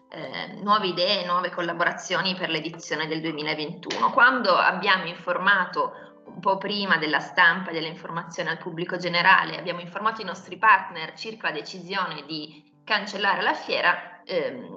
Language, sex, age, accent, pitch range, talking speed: Italian, female, 20-39, native, 175-205 Hz, 140 wpm